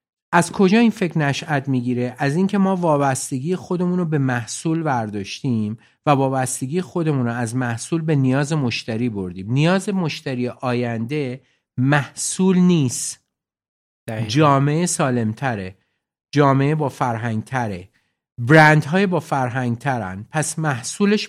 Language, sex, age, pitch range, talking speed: Persian, male, 50-69, 120-160 Hz, 115 wpm